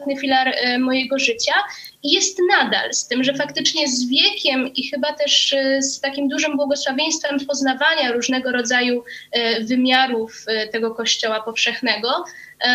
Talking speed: 120 wpm